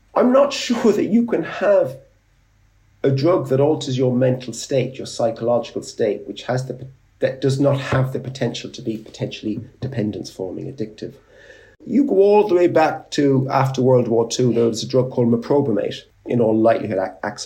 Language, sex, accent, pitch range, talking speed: English, male, British, 115-170 Hz, 180 wpm